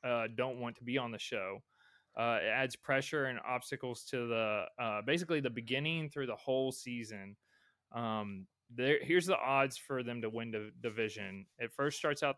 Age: 20-39